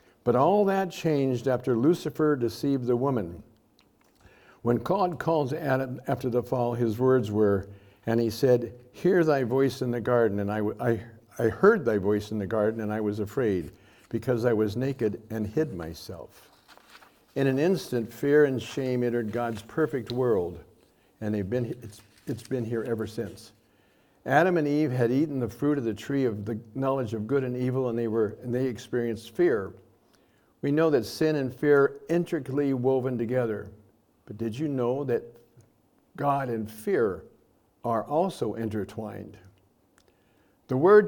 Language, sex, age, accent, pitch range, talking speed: English, male, 60-79, American, 110-140 Hz, 170 wpm